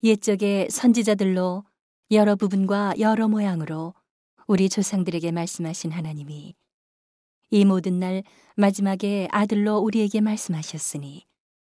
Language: Korean